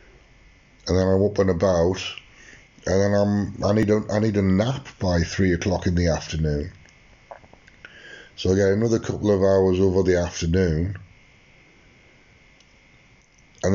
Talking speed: 145 wpm